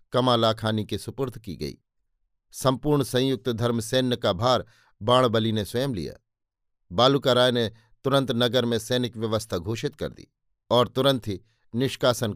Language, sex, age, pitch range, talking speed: Hindi, male, 50-69, 110-130 Hz, 145 wpm